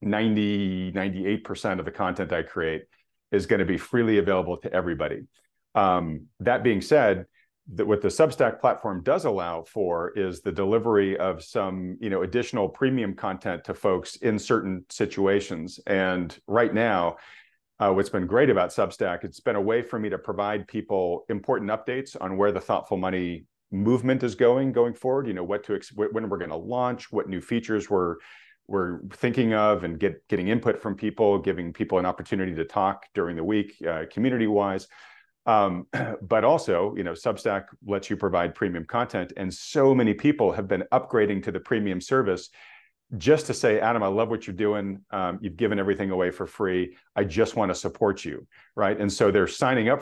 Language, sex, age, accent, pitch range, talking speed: English, male, 40-59, American, 95-115 Hz, 185 wpm